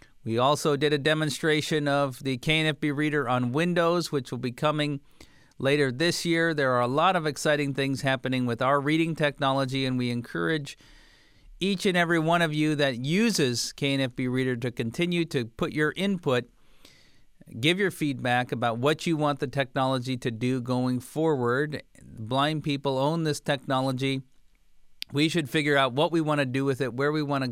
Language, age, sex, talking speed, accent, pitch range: English, 50-69, male, 180 wpm, American, 125-155 Hz